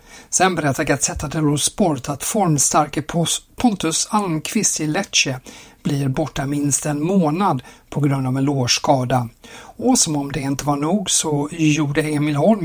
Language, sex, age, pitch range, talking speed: Swedish, male, 60-79, 145-170 Hz, 150 wpm